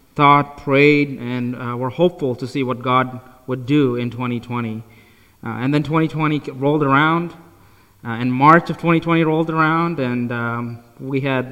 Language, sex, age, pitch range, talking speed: English, male, 20-39, 120-145 Hz, 160 wpm